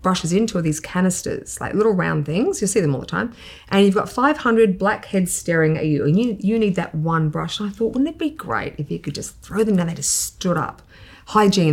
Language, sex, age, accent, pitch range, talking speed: English, female, 30-49, Australian, 160-205 Hz, 240 wpm